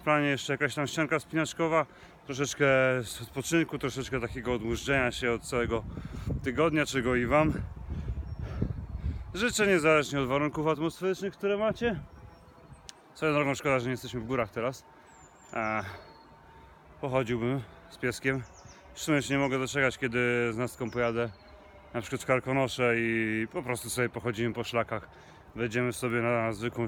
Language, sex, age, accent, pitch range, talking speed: Polish, male, 30-49, native, 115-145 Hz, 145 wpm